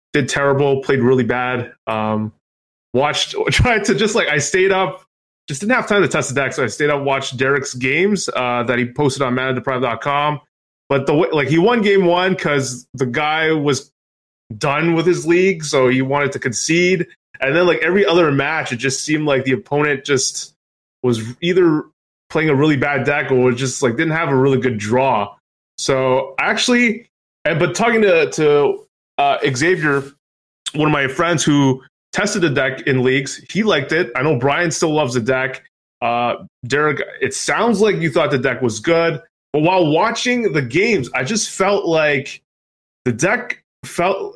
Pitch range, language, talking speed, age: 130-175 Hz, English, 185 wpm, 20-39